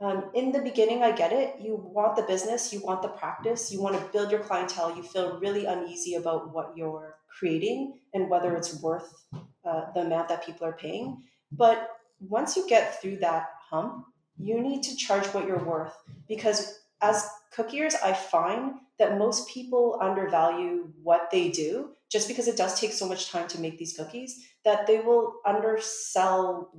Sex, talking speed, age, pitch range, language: female, 185 wpm, 30-49, 175-235 Hz, English